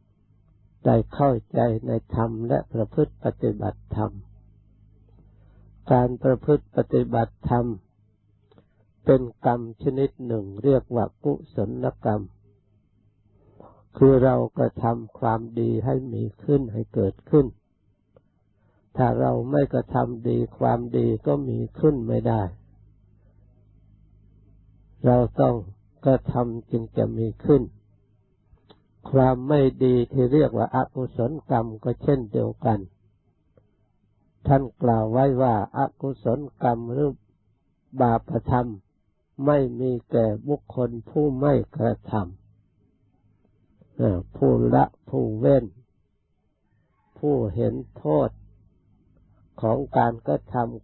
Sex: male